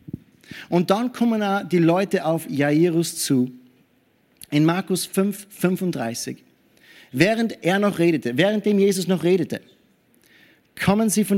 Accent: German